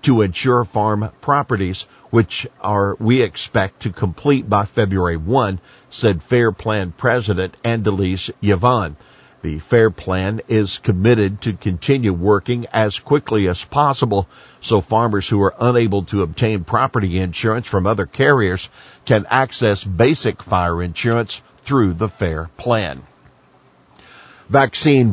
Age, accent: 50-69, American